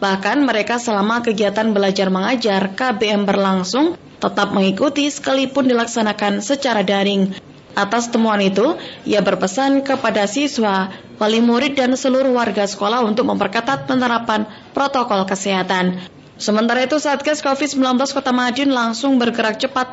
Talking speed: 125 wpm